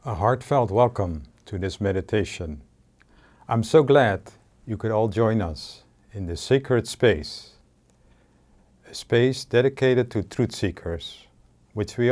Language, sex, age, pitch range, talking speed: English, male, 50-69, 95-130 Hz, 130 wpm